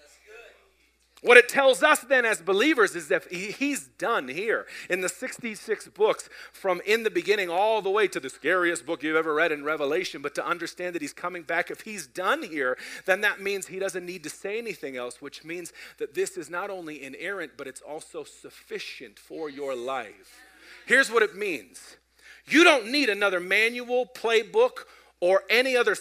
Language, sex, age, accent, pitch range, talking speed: English, male, 40-59, American, 175-290 Hz, 185 wpm